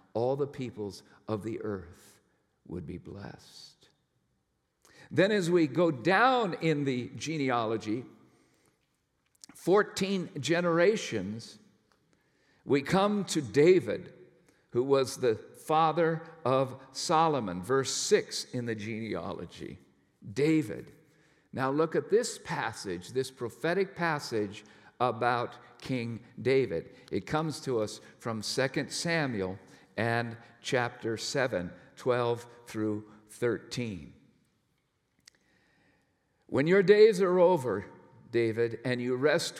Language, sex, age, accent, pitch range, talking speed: English, male, 50-69, American, 115-155 Hz, 105 wpm